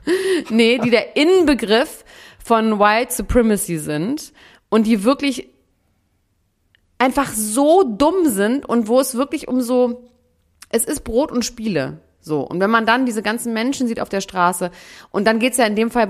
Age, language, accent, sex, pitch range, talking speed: 30-49, German, German, female, 160-215 Hz, 170 wpm